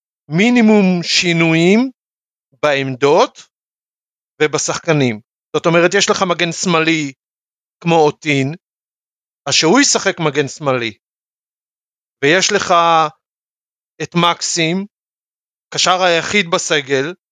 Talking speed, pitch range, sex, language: 85 wpm, 160-200 Hz, male, Hebrew